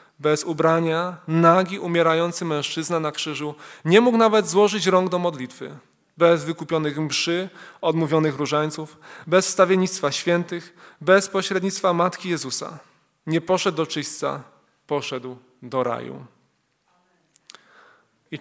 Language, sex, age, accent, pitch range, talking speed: Polish, male, 20-39, native, 145-185 Hz, 110 wpm